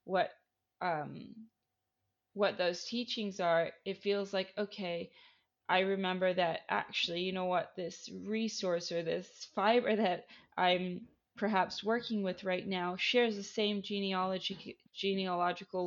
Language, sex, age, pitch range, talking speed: English, female, 20-39, 180-215 Hz, 130 wpm